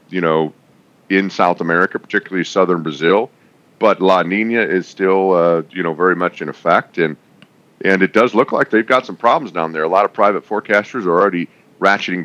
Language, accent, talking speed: English, American, 195 wpm